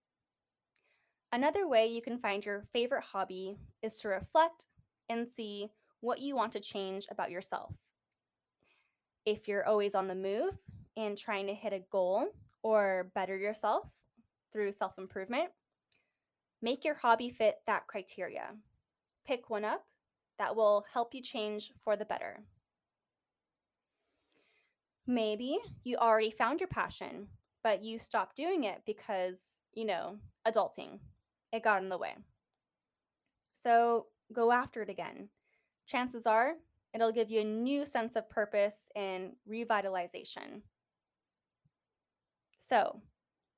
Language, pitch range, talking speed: English, 205-245 Hz, 125 wpm